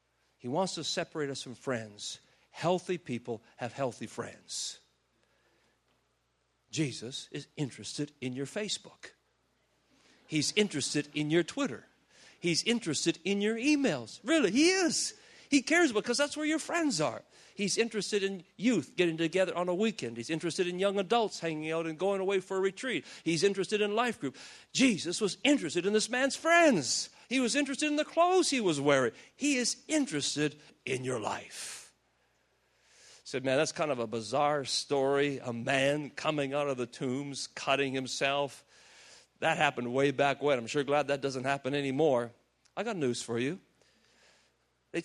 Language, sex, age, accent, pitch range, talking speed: English, male, 50-69, American, 135-200 Hz, 165 wpm